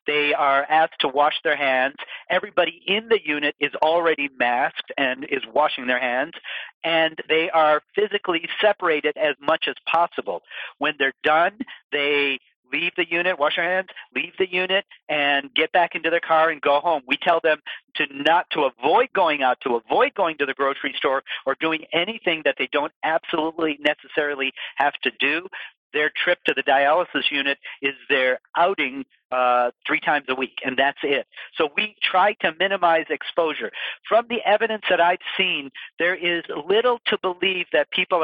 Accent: American